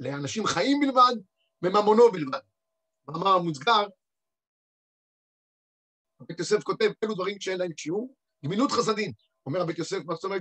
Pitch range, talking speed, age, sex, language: 175-285 Hz, 135 wpm, 50-69, male, Hebrew